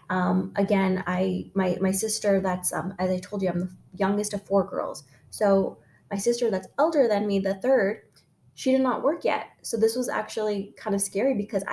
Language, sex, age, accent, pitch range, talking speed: English, female, 20-39, American, 195-245 Hz, 205 wpm